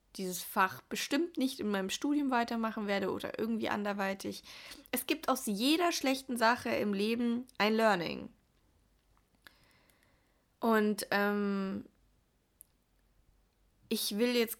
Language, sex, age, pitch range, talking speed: German, female, 20-39, 205-255 Hz, 110 wpm